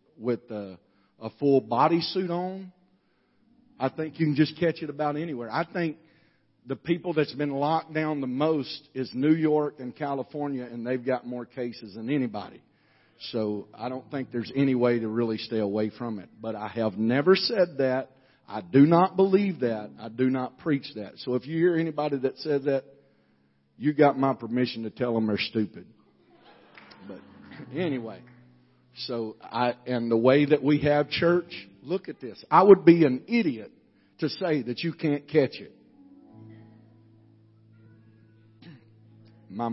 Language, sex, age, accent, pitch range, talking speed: English, male, 50-69, American, 110-140 Hz, 165 wpm